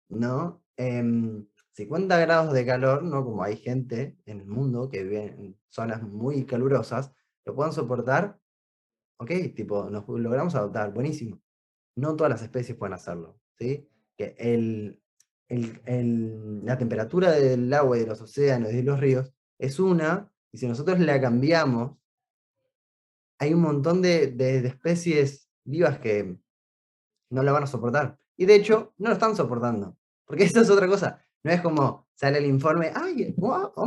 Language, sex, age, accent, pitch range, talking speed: Spanish, male, 20-39, Argentinian, 120-155 Hz, 165 wpm